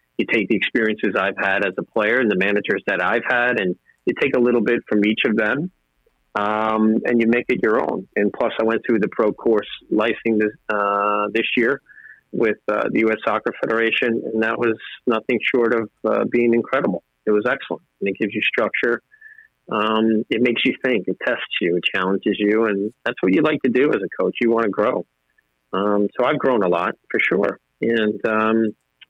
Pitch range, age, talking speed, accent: 105-115 Hz, 40-59, 210 wpm, American